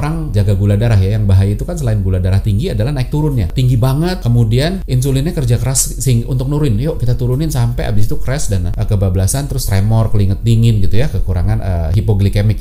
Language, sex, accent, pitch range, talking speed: Indonesian, male, native, 105-150 Hz, 205 wpm